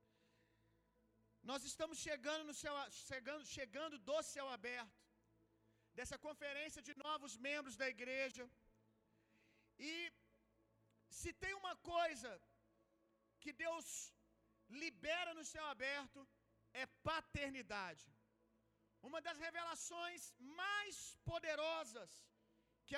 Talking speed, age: 95 wpm, 40-59